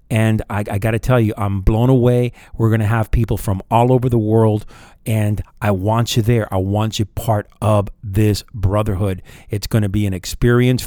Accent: American